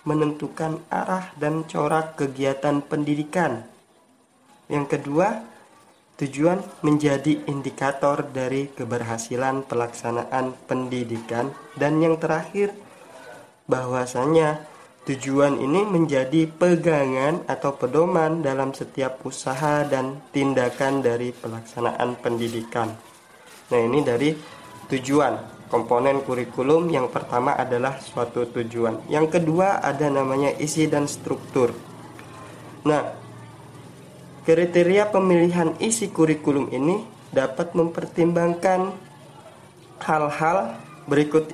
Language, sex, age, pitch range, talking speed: Malay, male, 20-39, 130-160 Hz, 90 wpm